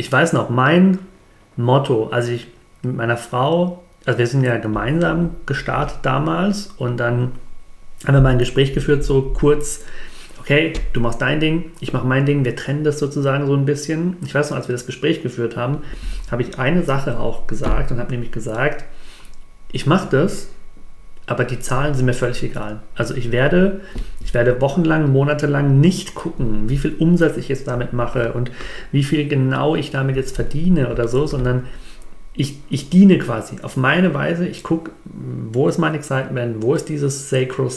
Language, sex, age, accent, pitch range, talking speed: German, male, 40-59, German, 125-155 Hz, 185 wpm